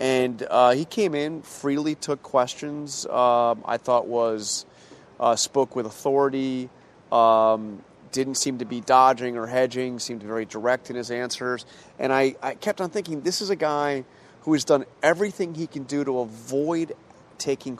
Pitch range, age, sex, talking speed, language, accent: 120-145 Hz, 30-49, male, 170 wpm, English, American